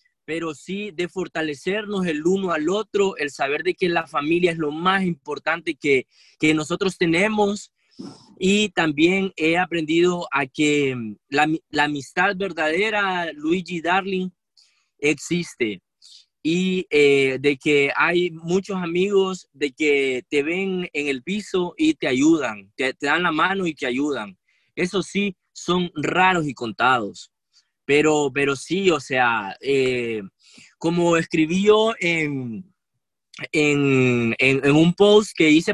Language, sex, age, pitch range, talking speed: Spanish, male, 20-39, 145-190 Hz, 140 wpm